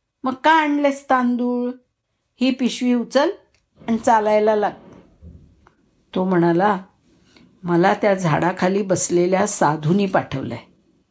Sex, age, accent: female, 60-79, native